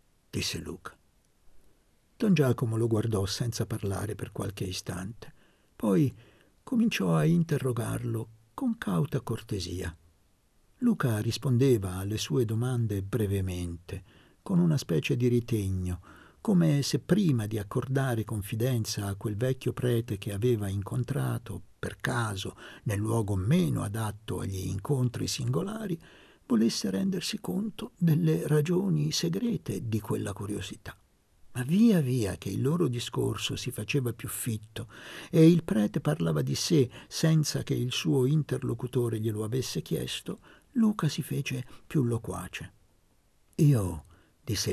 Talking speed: 125 wpm